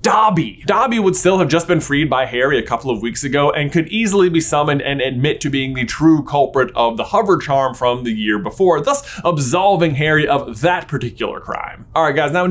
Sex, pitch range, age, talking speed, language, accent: male, 125-185 Hz, 20-39, 225 wpm, English, American